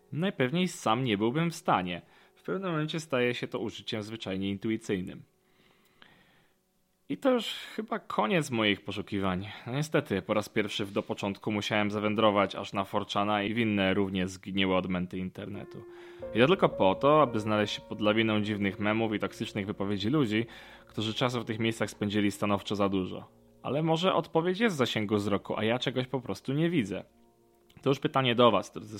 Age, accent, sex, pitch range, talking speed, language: 20-39, native, male, 105-145 Hz, 175 wpm, Polish